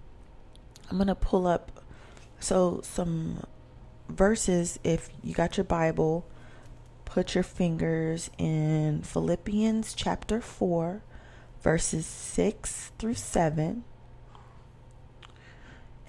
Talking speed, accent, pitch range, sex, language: 90 wpm, American, 125-175 Hz, female, English